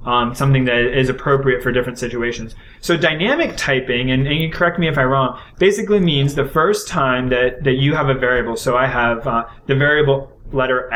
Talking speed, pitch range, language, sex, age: 205 wpm, 130-155 Hz, English, male, 20-39